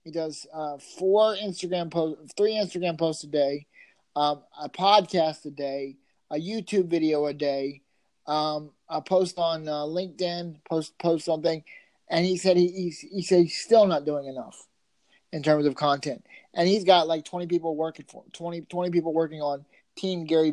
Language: English